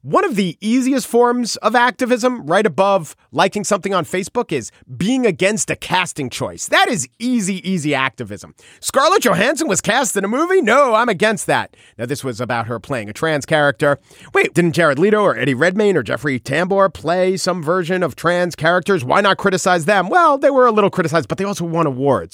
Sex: male